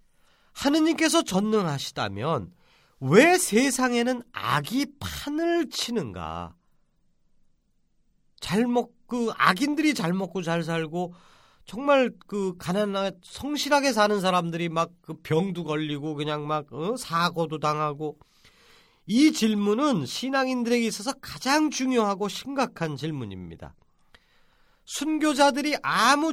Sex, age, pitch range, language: male, 40-59, 155-240 Hz, Korean